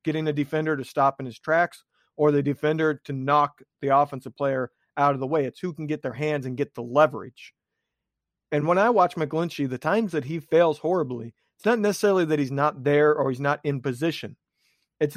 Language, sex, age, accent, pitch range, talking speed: English, male, 40-59, American, 135-165 Hz, 215 wpm